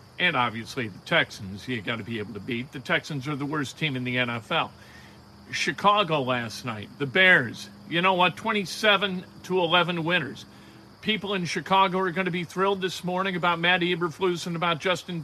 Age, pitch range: 50-69, 130-180 Hz